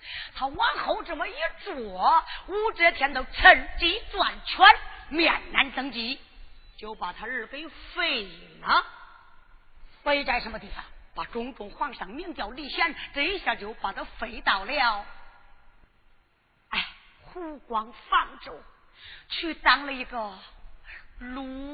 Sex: female